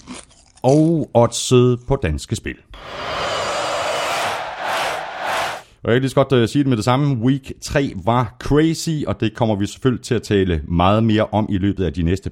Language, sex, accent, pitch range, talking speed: Danish, male, native, 95-140 Hz, 165 wpm